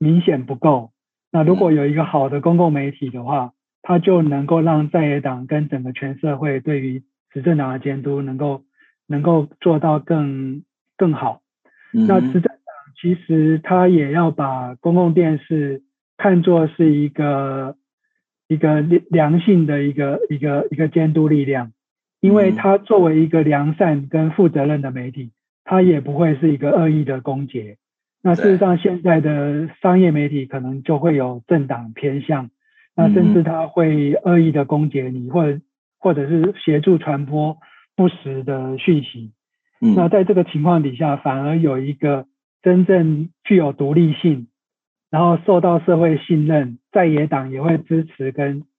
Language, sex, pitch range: Chinese, male, 140-175 Hz